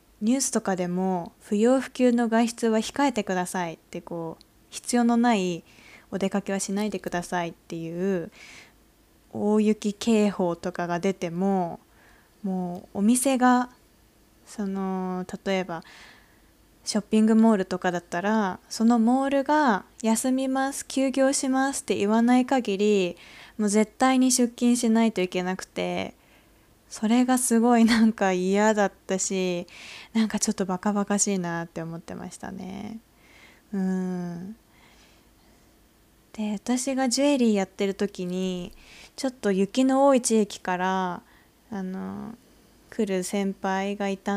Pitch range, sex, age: 185-235 Hz, female, 20-39